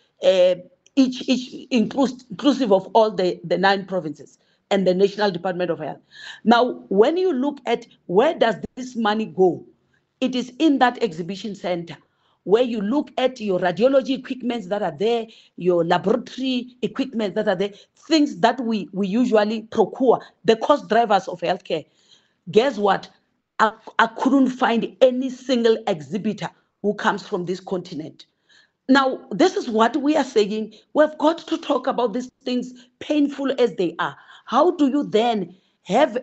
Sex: female